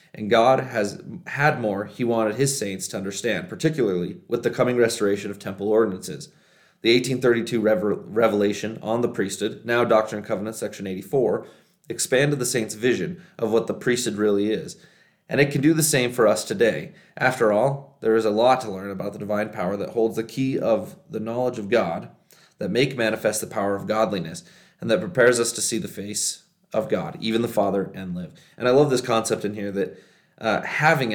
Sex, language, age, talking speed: male, English, 30-49, 200 wpm